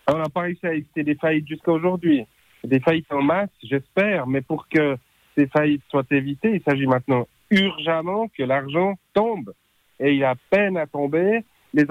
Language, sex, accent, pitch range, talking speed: French, male, French, 125-160 Hz, 190 wpm